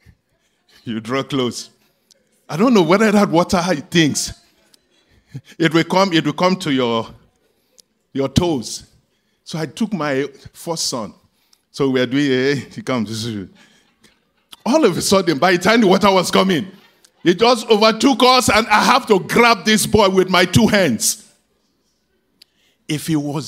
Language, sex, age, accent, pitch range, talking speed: English, male, 50-69, Nigerian, 160-240 Hz, 160 wpm